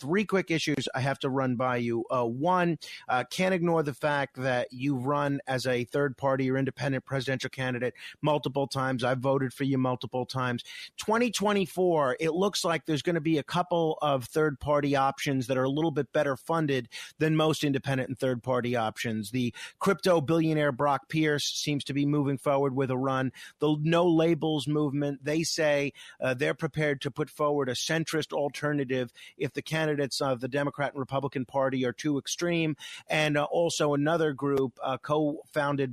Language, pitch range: English, 130-160 Hz